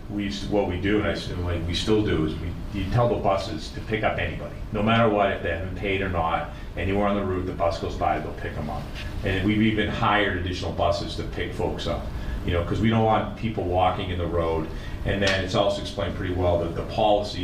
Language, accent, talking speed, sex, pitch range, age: English, American, 250 wpm, male, 85-105 Hz, 40-59